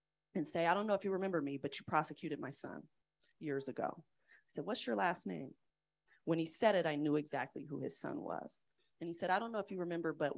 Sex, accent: female, American